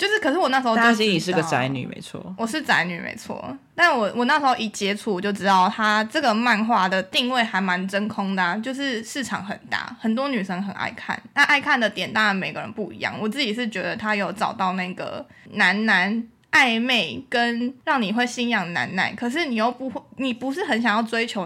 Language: Chinese